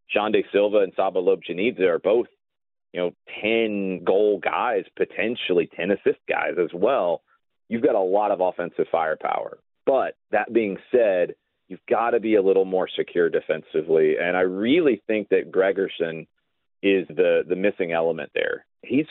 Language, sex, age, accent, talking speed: English, male, 40-59, American, 165 wpm